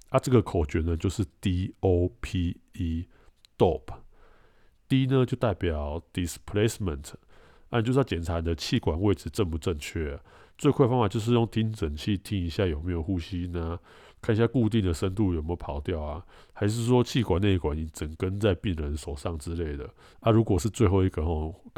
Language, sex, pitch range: Chinese, male, 85-110 Hz